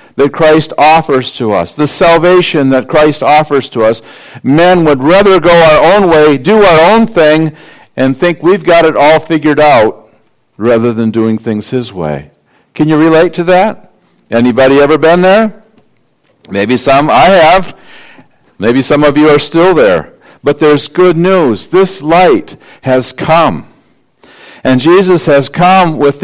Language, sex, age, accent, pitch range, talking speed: English, male, 60-79, American, 110-160 Hz, 160 wpm